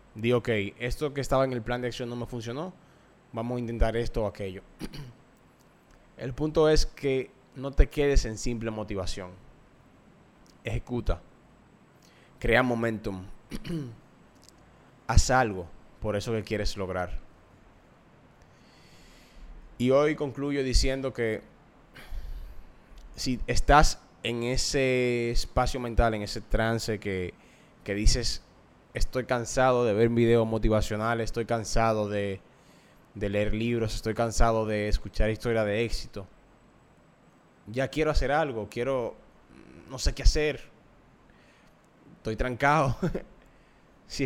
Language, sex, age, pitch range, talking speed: Spanish, male, 20-39, 105-130 Hz, 120 wpm